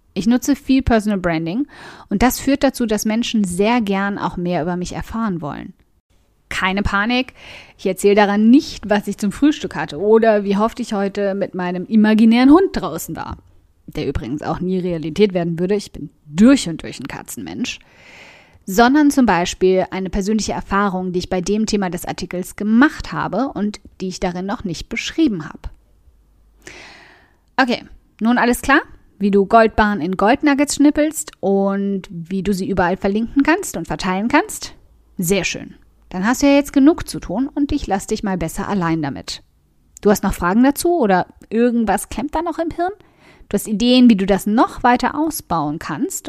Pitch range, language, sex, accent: 185-245 Hz, German, female, German